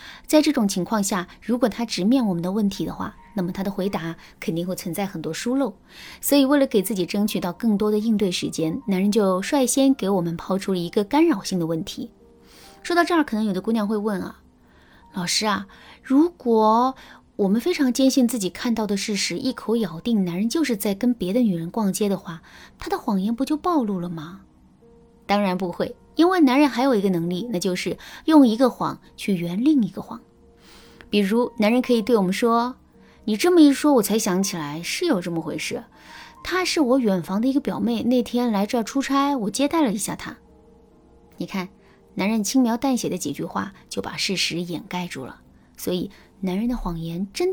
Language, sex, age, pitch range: Chinese, female, 20-39, 185-255 Hz